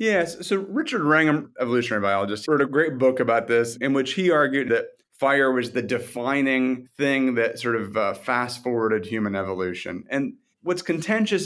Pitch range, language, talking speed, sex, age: 115-150 Hz, English, 170 wpm, male, 30-49